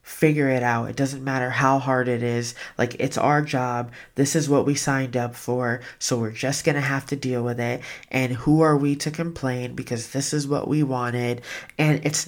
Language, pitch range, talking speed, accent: English, 130-155 Hz, 220 wpm, American